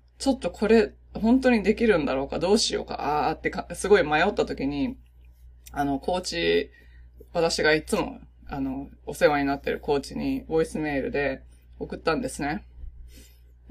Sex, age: female, 20-39